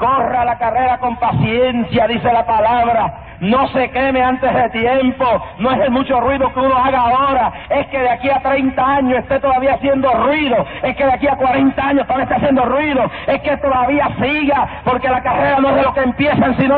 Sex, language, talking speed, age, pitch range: male, English, 210 wpm, 40-59, 230-275 Hz